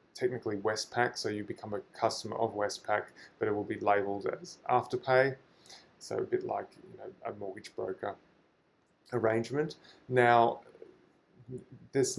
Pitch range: 105-125 Hz